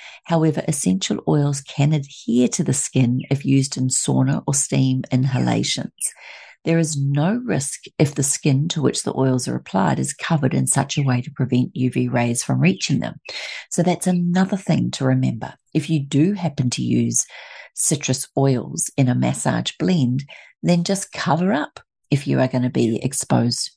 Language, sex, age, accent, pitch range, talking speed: English, female, 40-59, Australian, 130-160 Hz, 175 wpm